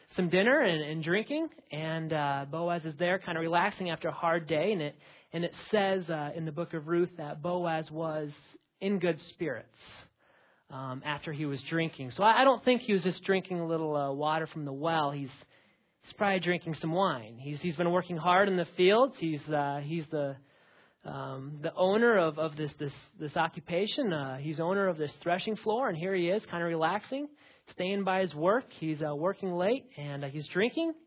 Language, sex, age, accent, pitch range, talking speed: English, male, 30-49, American, 150-200 Hz, 210 wpm